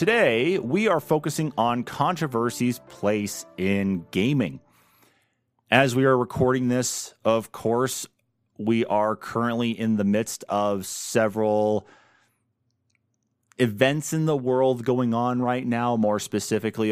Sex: male